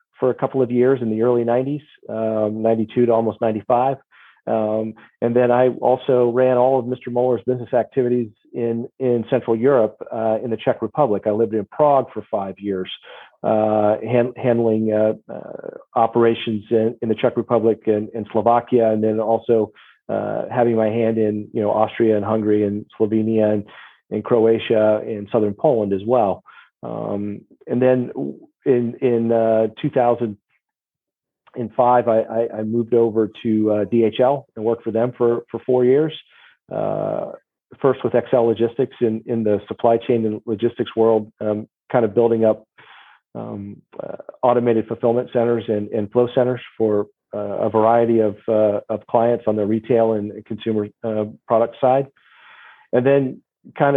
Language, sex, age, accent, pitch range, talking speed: English, male, 40-59, American, 110-125 Hz, 165 wpm